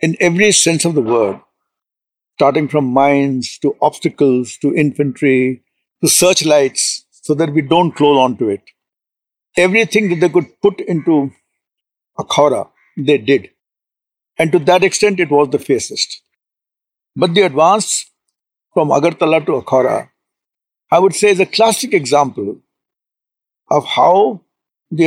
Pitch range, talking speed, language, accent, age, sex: 140-170 Hz, 135 wpm, English, Indian, 60-79, male